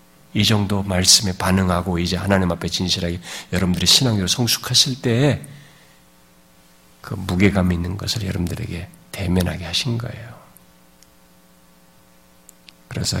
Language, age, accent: Korean, 50-69, native